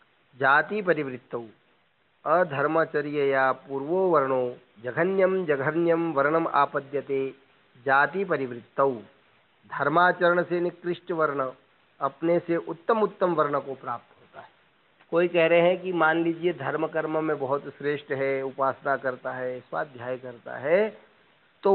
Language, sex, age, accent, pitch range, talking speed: Hindi, male, 40-59, native, 135-175 Hz, 120 wpm